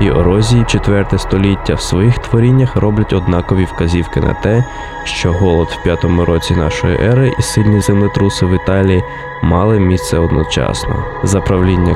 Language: Russian